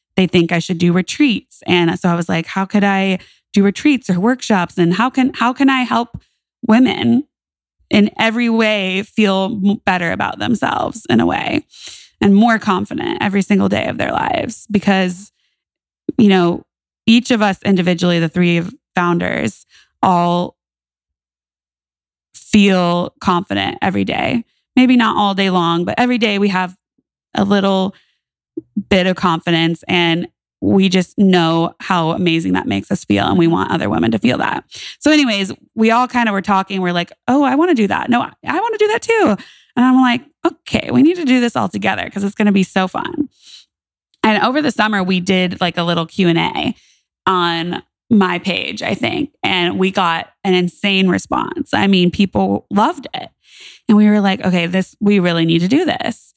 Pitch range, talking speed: 175-235 Hz, 185 wpm